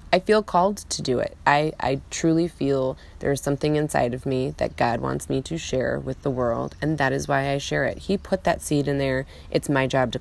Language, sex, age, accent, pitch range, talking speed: English, female, 30-49, American, 130-180 Hz, 240 wpm